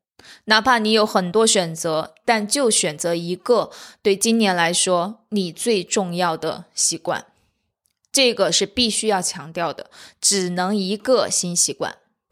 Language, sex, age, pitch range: Chinese, female, 20-39, 175-215 Hz